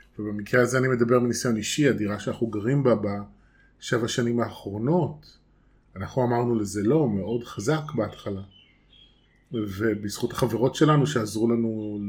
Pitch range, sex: 105-125 Hz, male